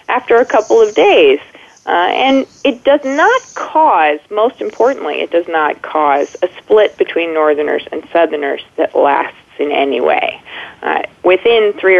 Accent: American